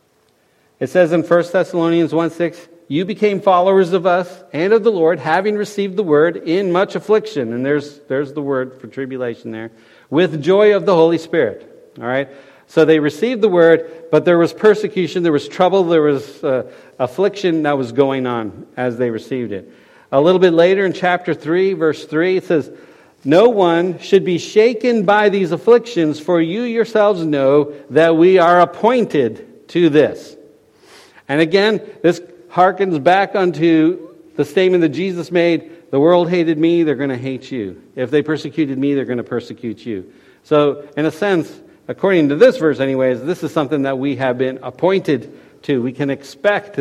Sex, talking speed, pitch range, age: male, 180 wpm, 140-185 Hz, 60-79